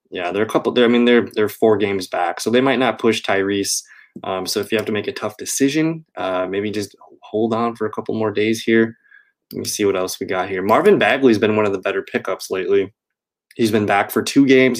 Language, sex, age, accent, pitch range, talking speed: English, male, 20-39, American, 100-120 Hz, 260 wpm